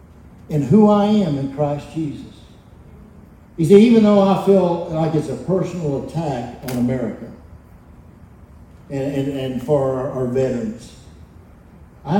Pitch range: 115-180 Hz